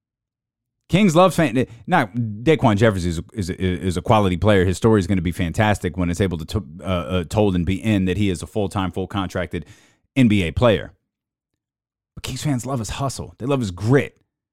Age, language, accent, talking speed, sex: 30-49, English, American, 220 wpm, male